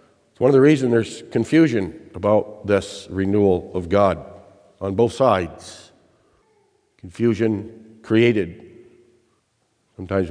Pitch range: 100-150 Hz